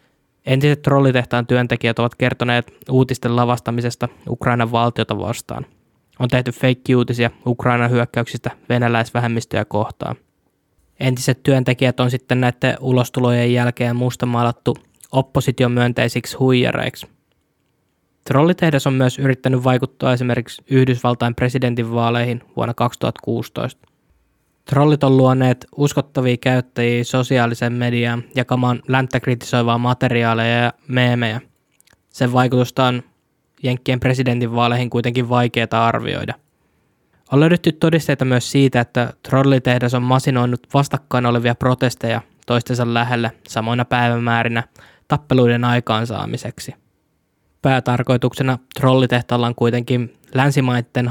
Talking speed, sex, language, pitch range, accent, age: 95 wpm, male, Finnish, 120-130 Hz, native, 20-39